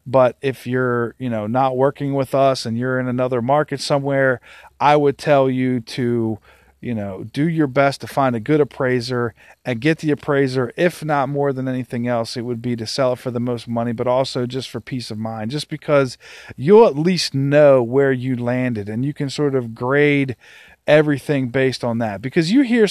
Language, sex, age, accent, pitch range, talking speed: English, male, 40-59, American, 125-150 Hz, 205 wpm